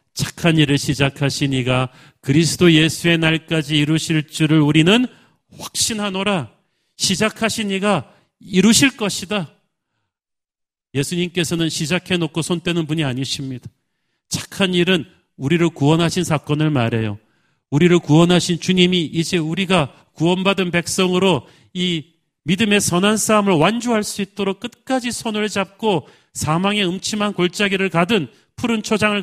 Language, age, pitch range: Korean, 40-59, 130-185 Hz